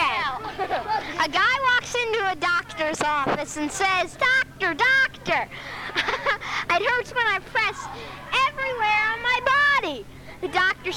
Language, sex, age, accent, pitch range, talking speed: English, female, 10-29, American, 340-450 Hz, 120 wpm